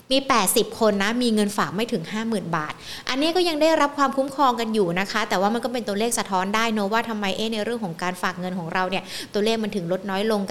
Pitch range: 185-235 Hz